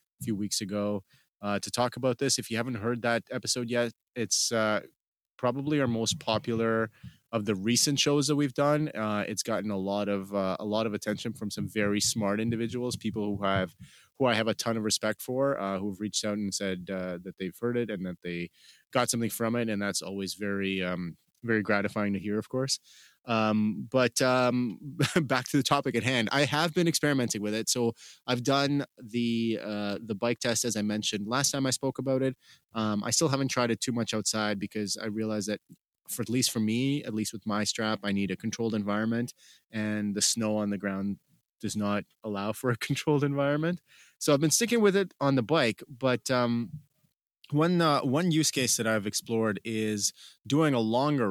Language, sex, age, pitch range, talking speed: English, male, 30-49, 105-125 Hz, 210 wpm